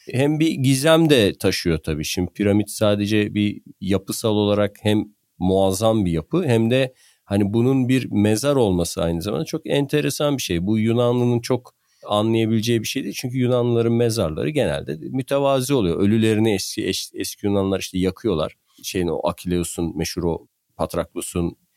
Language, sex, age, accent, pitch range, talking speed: Turkish, male, 50-69, native, 85-115 Hz, 145 wpm